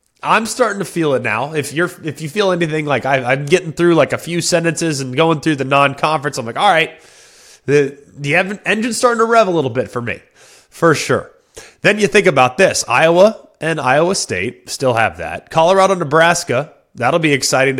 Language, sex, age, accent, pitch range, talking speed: English, male, 30-49, American, 135-190 Hz, 200 wpm